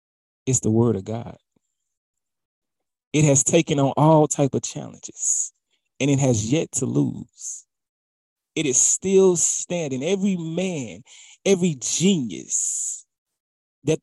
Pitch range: 110-165 Hz